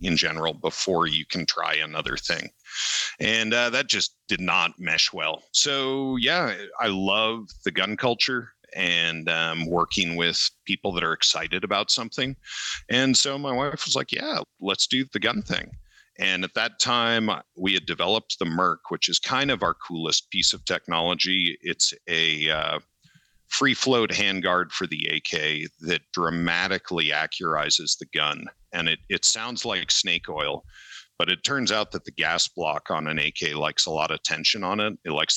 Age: 50-69